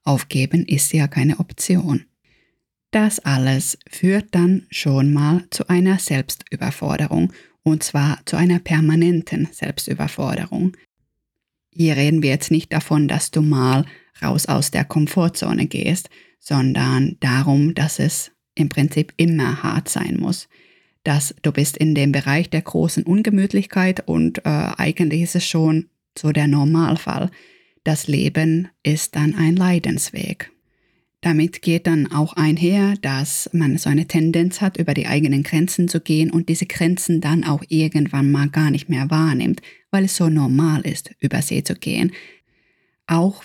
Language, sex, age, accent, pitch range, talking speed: German, female, 20-39, German, 145-170 Hz, 145 wpm